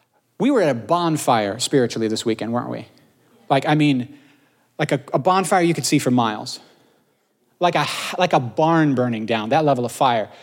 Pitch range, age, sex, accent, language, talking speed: 130-170 Hz, 30-49, male, American, English, 190 wpm